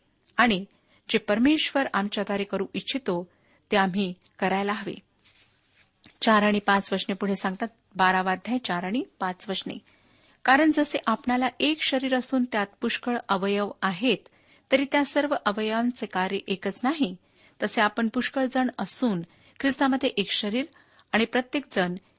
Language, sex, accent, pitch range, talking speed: Marathi, female, native, 195-270 Hz, 130 wpm